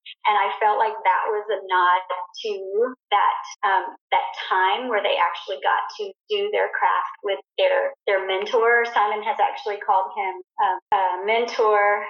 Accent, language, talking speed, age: American, English, 165 wpm, 40-59